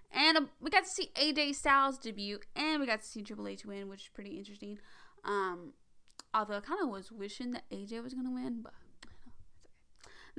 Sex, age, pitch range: female, 10-29, 205-270 Hz